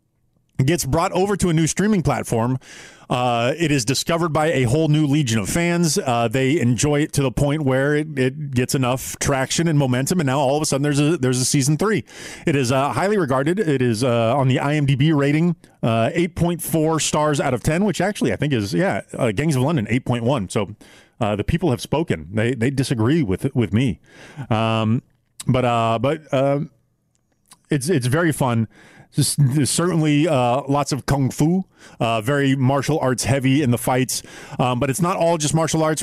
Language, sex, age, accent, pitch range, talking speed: English, male, 30-49, American, 125-150 Hz, 205 wpm